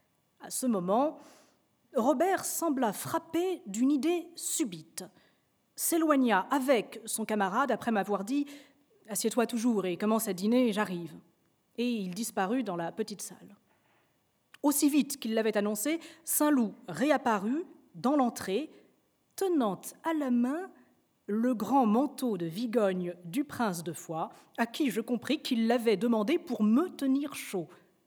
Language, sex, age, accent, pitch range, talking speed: French, female, 40-59, French, 200-285 Hz, 135 wpm